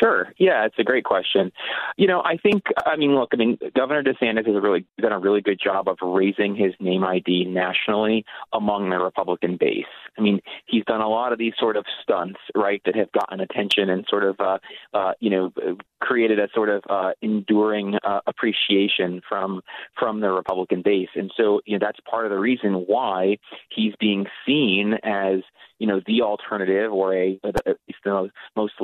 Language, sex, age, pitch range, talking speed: English, male, 30-49, 95-125 Hz, 200 wpm